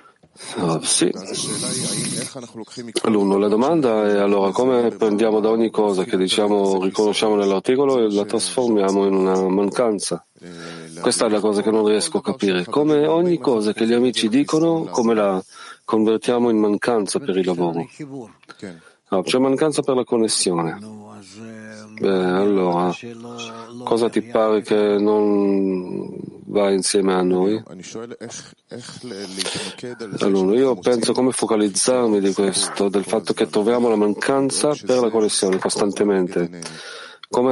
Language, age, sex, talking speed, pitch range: Italian, 40-59, male, 130 wpm, 95-120 Hz